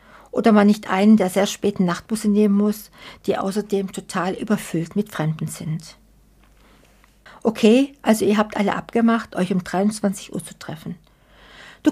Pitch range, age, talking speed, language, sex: 185-225 Hz, 60-79, 150 wpm, German, female